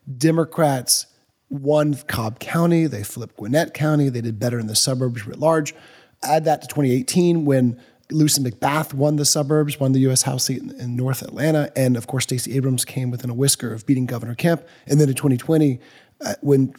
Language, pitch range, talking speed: English, 125-150 Hz, 185 wpm